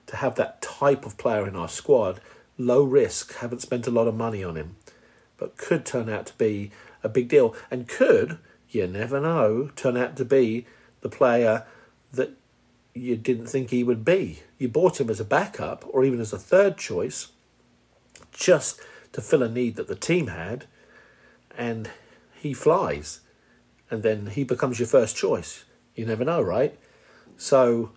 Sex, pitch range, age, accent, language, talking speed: male, 105-125 Hz, 50-69, British, English, 175 wpm